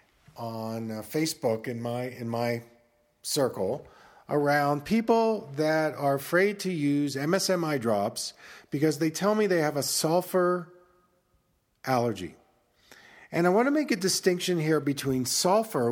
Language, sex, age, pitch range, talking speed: English, male, 40-59, 130-180 Hz, 130 wpm